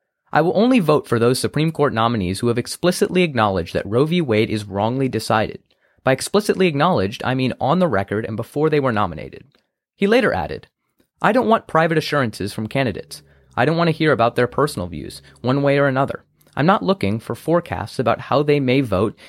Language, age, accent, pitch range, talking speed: English, 30-49, American, 110-165 Hz, 205 wpm